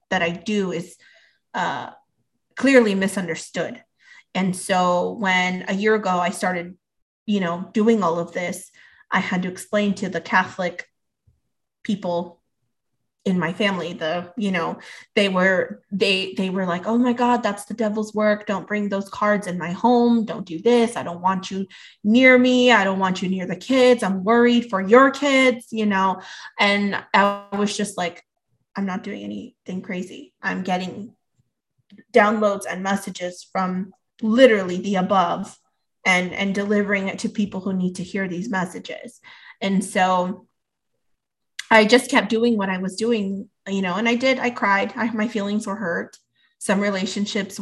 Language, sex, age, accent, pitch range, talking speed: English, female, 20-39, American, 185-220 Hz, 165 wpm